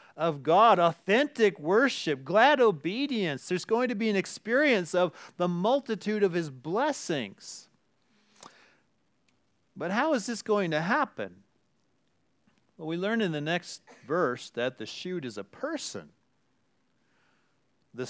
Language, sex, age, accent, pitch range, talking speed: English, male, 40-59, American, 140-195 Hz, 130 wpm